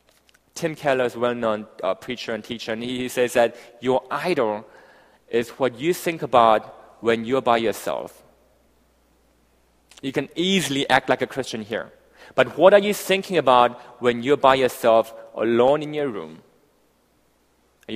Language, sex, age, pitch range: Korean, male, 30-49, 105-130 Hz